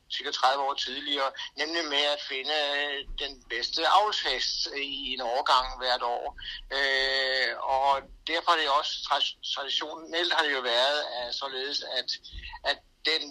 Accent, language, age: native, Danish, 60-79